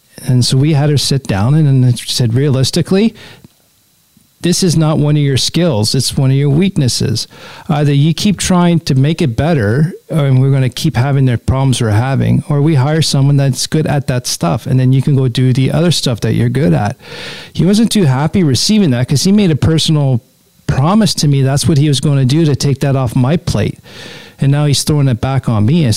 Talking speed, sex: 225 wpm, male